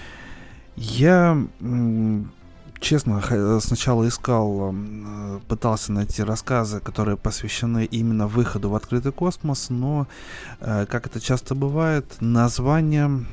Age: 20-39